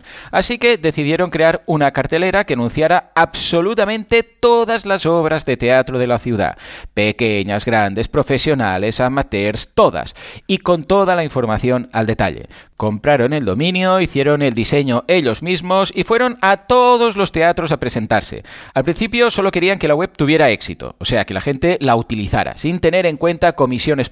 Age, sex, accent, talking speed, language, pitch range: 30-49, male, Spanish, 165 wpm, Spanish, 120-185 Hz